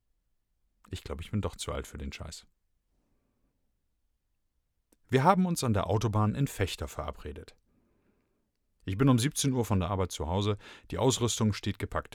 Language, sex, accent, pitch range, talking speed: German, male, German, 85-115 Hz, 165 wpm